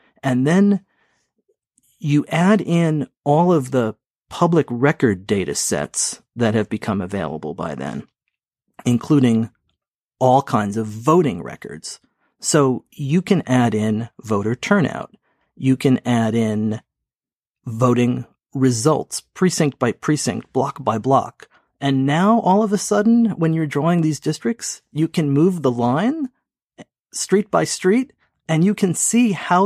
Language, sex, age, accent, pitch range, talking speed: English, male, 40-59, American, 115-165 Hz, 135 wpm